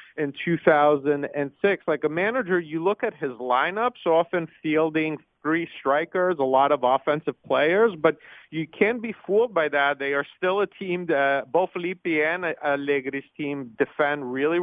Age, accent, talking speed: 40-59, American, 170 wpm